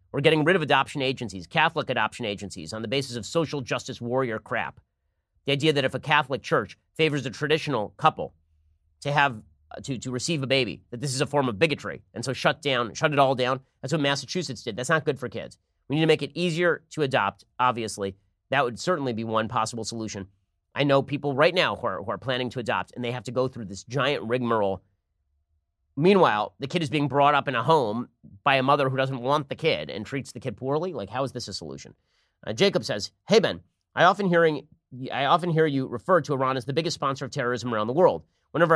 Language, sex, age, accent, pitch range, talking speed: English, male, 30-49, American, 110-145 Hz, 230 wpm